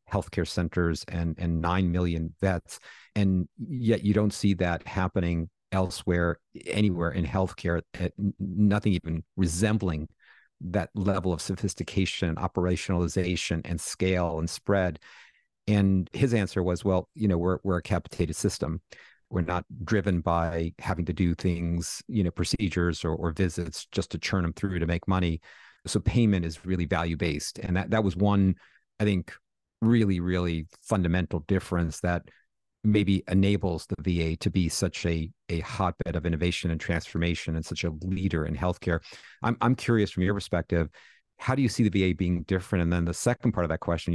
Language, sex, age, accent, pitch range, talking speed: English, male, 50-69, American, 85-100 Hz, 170 wpm